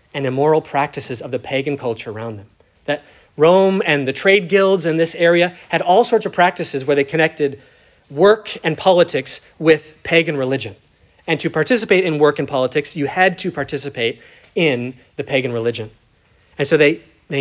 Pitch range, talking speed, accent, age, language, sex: 125-175 Hz, 175 wpm, American, 30-49, English, male